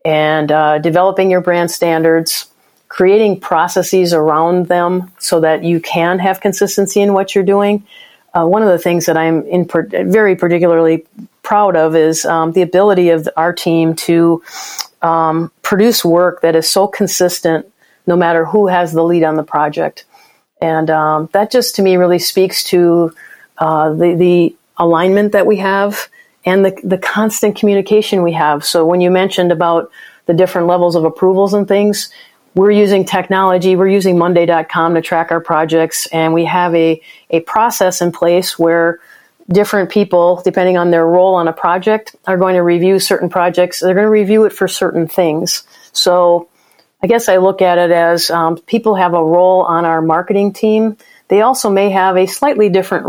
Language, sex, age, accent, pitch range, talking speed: English, female, 40-59, American, 165-195 Hz, 180 wpm